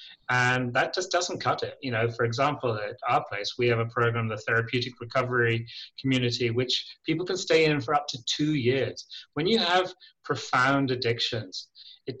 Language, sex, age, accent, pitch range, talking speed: English, male, 30-49, British, 115-135 Hz, 180 wpm